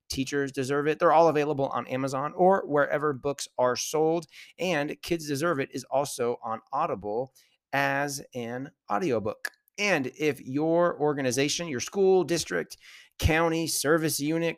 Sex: male